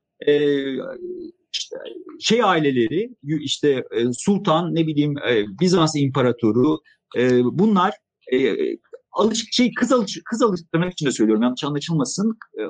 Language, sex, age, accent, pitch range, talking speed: Turkish, male, 50-69, native, 130-210 Hz, 115 wpm